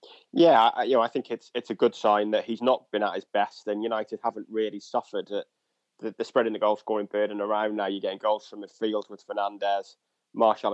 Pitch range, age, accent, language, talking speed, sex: 105-110 Hz, 20-39, British, English, 230 wpm, male